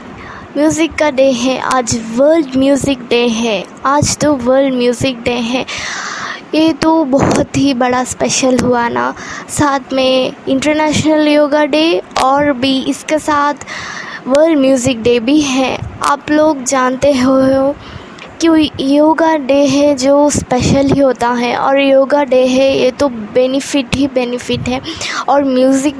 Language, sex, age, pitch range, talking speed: Hindi, female, 20-39, 260-300 Hz, 145 wpm